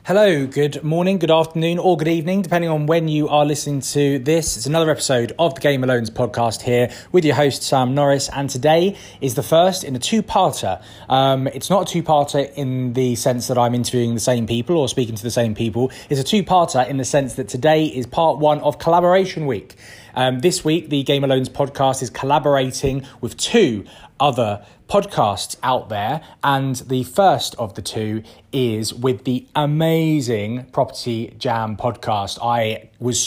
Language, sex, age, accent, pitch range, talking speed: English, male, 20-39, British, 115-145 Hz, 180 wpm